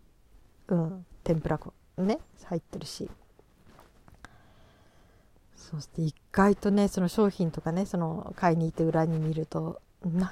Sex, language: female, Japanese